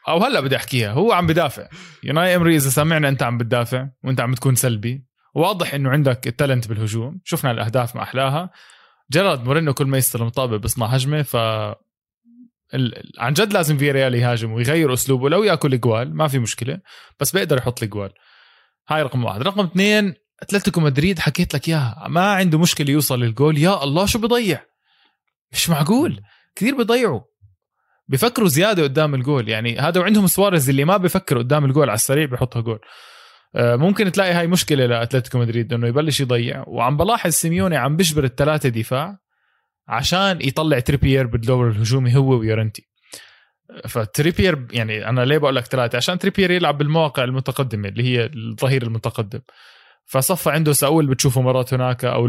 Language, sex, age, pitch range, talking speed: Arabic, male, 20-39, 120-160 Hz, 165 wpm